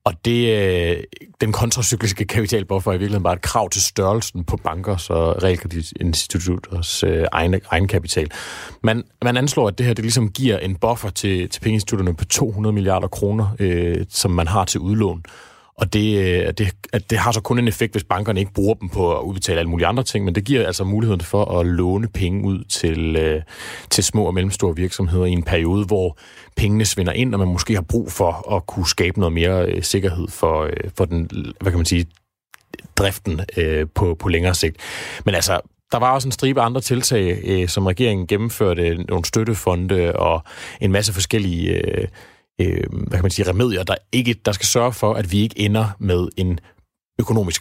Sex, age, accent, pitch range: male, 30-49, native, 90-105 Hz